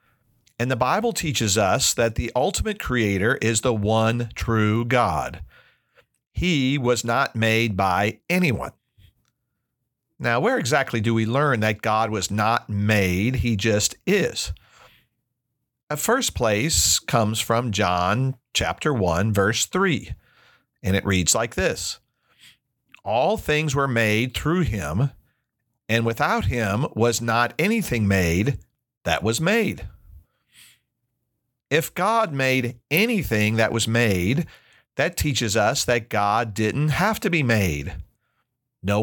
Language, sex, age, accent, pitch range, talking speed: English, male, 50-69, American, 105-135 Hz, 130 wpm